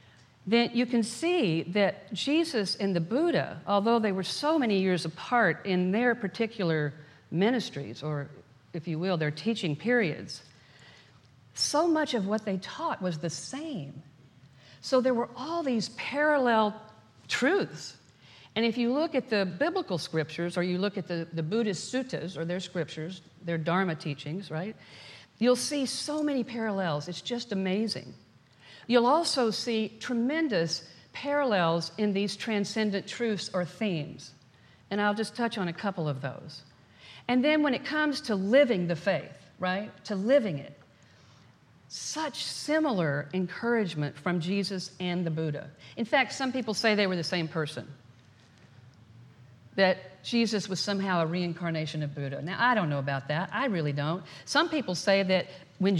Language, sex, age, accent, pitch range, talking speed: English, female, 50-69, American, 155-235 Hz, 160 wpm